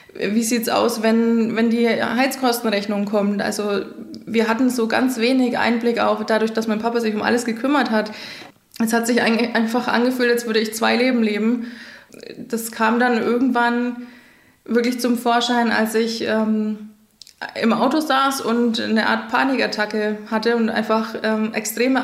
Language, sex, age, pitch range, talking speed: German, female, 20-39, 220-240 Hz, 160 wpm